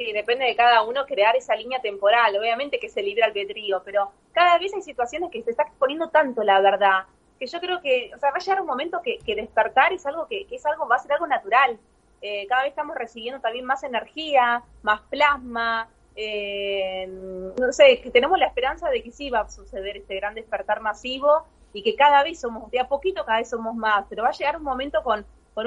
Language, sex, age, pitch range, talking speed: Spanish, female, 20-39, 210-290 Hz, 230 wpm